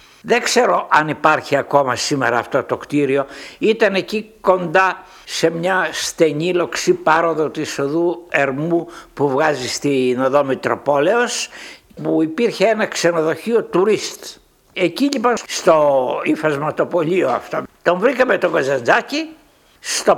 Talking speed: 120 wpm